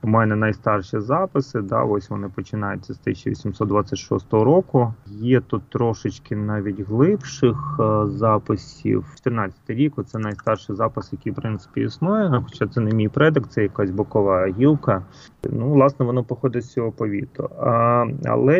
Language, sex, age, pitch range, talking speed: Ukrainian, male, 30-49, 105-135 Hz, 145 wpm